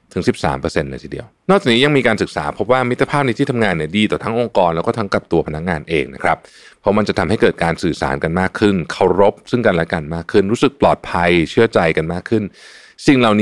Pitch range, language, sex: 95-125 Hz, Thai, male